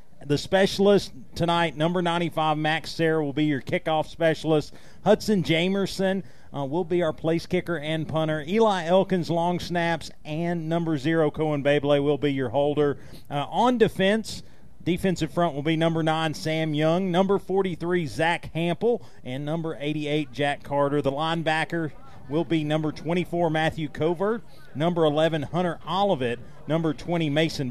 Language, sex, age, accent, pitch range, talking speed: English, male, 40-59, American, 140-170 Hz, 150 wpm